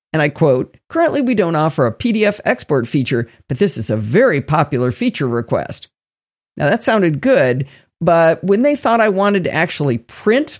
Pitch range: 130-220 Hz